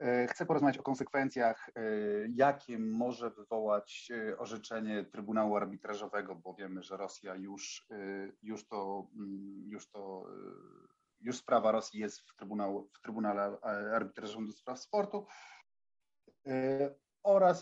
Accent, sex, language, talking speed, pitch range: native, male, Polish, 100 wpm, 105-125 Hz